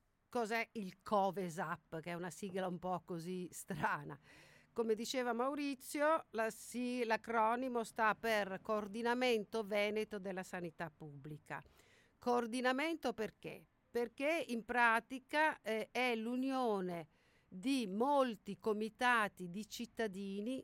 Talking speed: 100 wpm